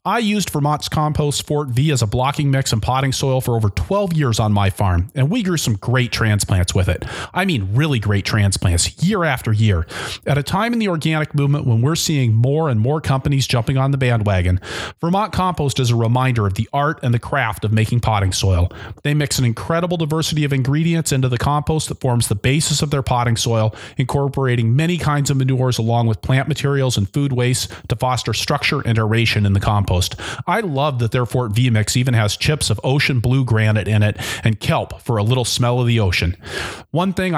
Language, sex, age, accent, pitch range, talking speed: English, male, 40-59, American, 110-145 Hz, 215 wpm